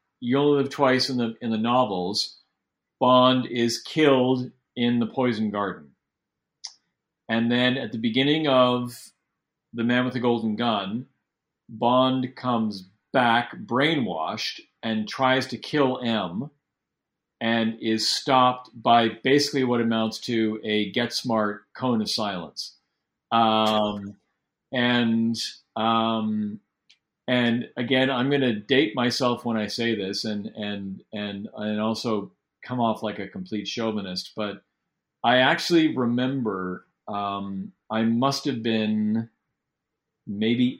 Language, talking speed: English, 125 wpm